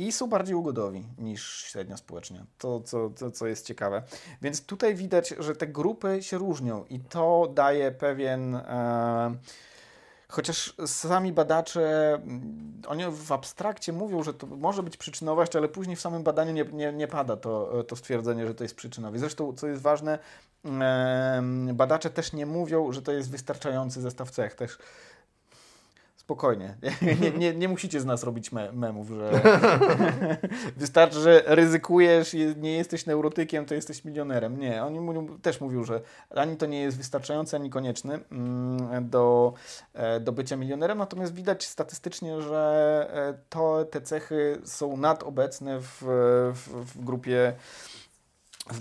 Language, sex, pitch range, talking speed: Polish, male, 125-160 Hz, 150 wpm